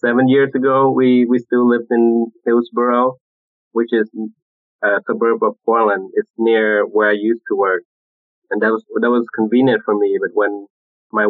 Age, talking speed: 20-39, 175 wpm